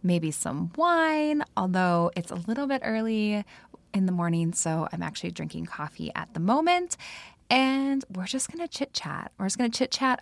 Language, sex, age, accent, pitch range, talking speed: English, female, 20-39, American, 175-245 Hz, 180 wpm